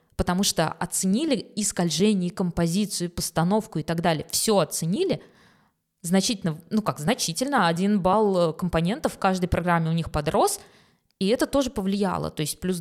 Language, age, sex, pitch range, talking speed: Russian, 20-39, female, 170-220 Hz, 150 wpm